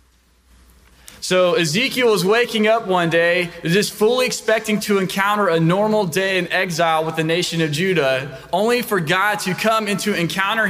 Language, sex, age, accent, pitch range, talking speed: English, male, 20-39, American, 145-190 Hz, 170 wpm